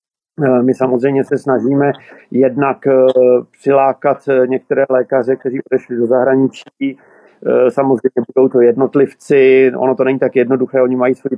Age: 50-69